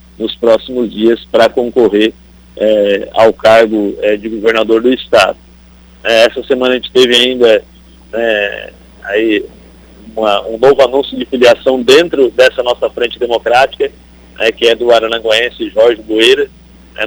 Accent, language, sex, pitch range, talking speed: Brazilian, Portuguese, male, 105-155 Hz, 150 wpm